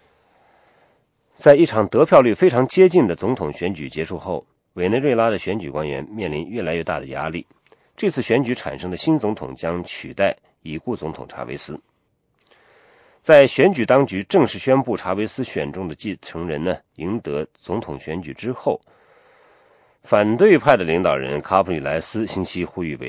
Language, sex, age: English, male, 40-59